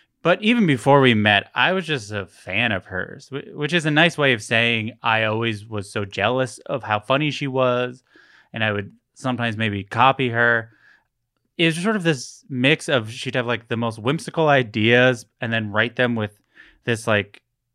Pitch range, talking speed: 110-140 Hz, 190 wpm